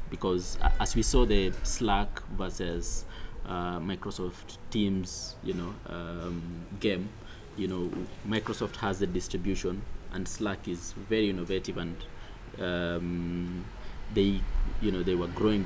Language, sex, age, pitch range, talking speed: English, male, 20-39, 90-105 Hz, 125 wpm